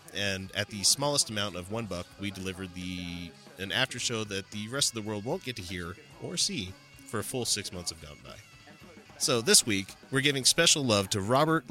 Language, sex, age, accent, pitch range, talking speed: English, male, 30-49, American, 95-120 Hz, 215 wpm